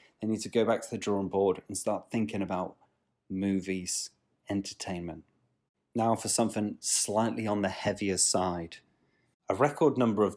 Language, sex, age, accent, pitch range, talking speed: English, male, 30-49, British, 100-135 Hz, 155 wpm